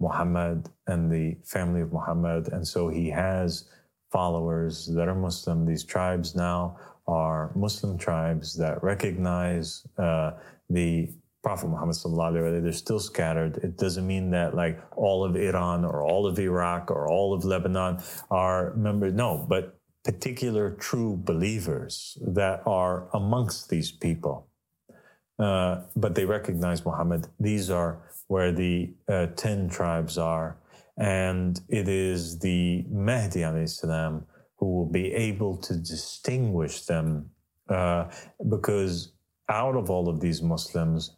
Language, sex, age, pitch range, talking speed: English, male, 30-49, 85-105 Hz, 135 wpm